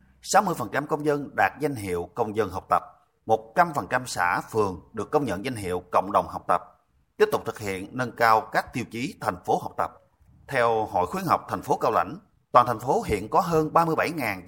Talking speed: 205 wpm